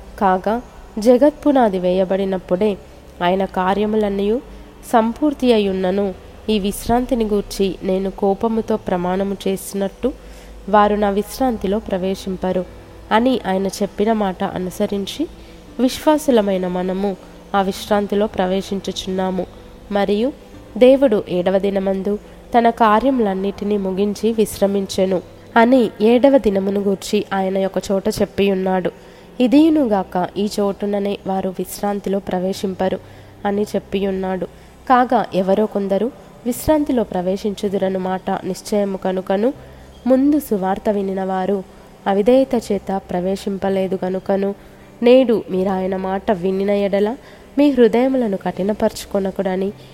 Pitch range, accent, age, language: 190-220 Hz, native, 20-39, Telugu